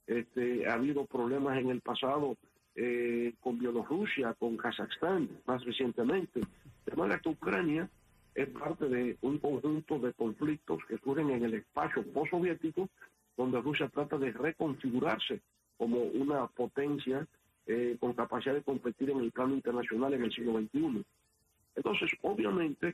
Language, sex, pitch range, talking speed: English, male, 120-150 Hz, 140 wpm